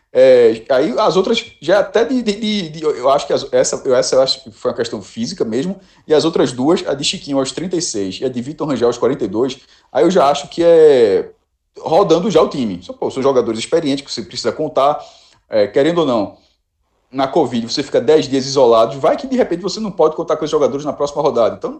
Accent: Brazilian